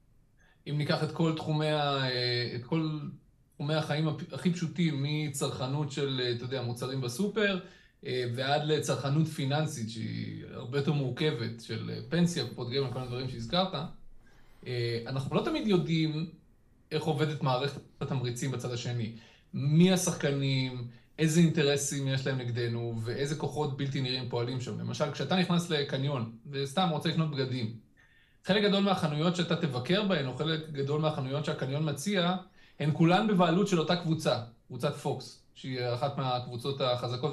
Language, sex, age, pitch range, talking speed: Hebrew, male, 20-39, 125-165 Hz, 135 wpm